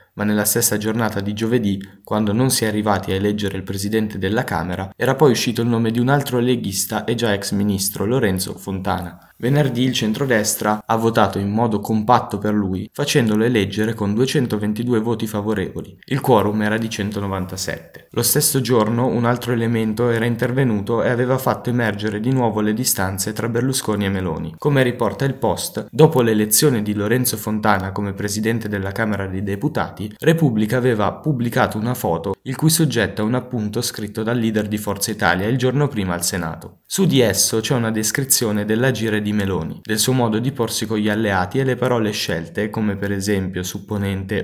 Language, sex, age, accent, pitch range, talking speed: Italian, male, 20-39, native, 100-120 Hz, 185 wpm